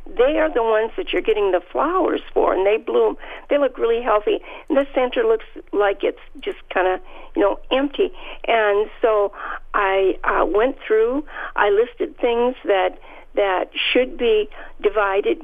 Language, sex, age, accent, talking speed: English, female, 50-69, American, 165 wpm